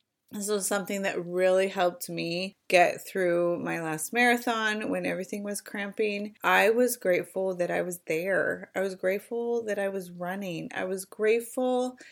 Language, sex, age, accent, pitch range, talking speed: English, female, 20-39, American, 170-215 Hz, 165 wpm